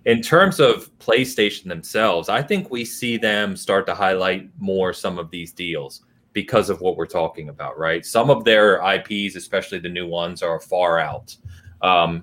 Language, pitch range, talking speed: English, 85-110 Hz, 180 wpm